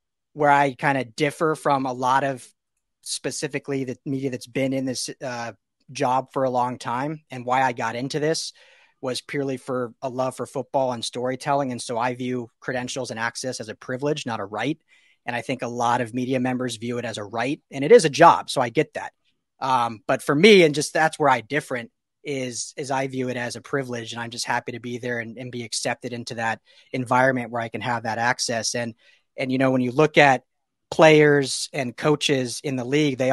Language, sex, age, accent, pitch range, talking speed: English, male, 30-49, American, 125-150 Hz, 225 wpm